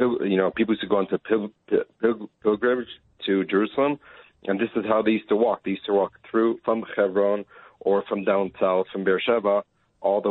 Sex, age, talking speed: male, 40-59, 190 wpm